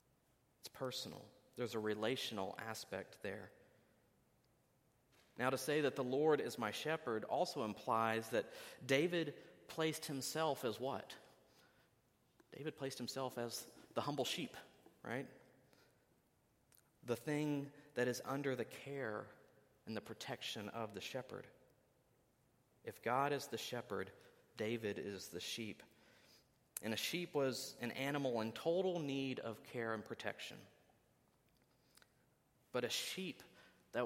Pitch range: 110-135 Hz